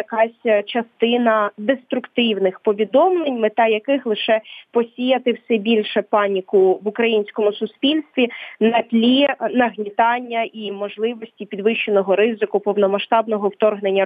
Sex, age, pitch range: female, 20-39, 210-260 Hz